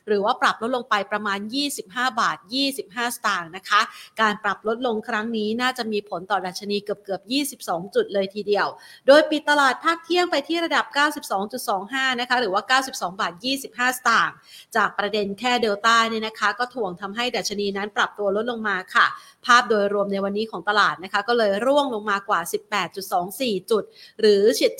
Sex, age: female, 30-49